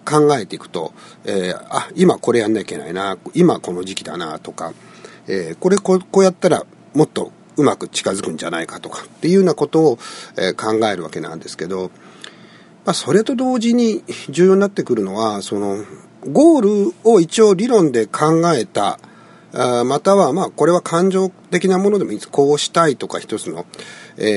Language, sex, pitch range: Japanese, male, 140-220 Hz